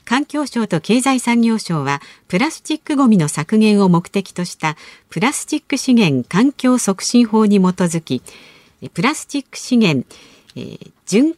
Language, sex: Japanese, female